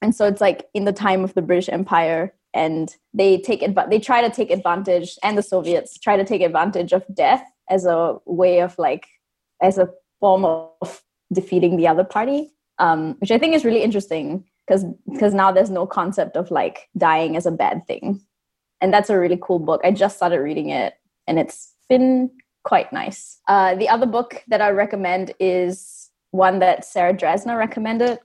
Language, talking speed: English, 190 wpm